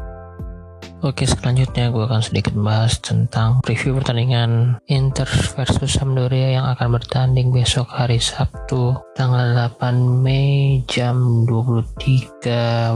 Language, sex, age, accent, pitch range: Chinese, male, 20-39, Indonesian, 115-135 Hz